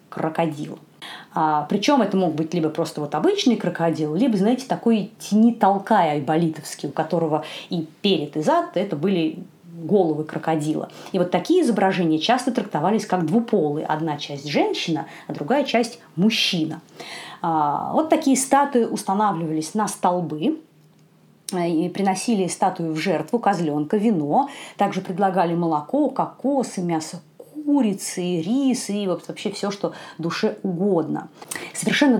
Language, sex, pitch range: Russian, female, 165-225 Hz